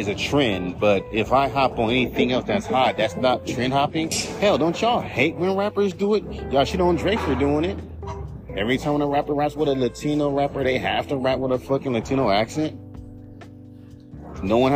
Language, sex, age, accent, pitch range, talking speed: English, male, 30-49, American, 110-150 Hz, 205 wpm